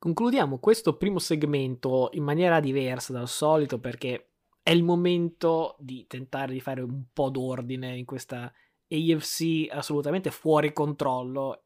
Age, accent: 20-39, native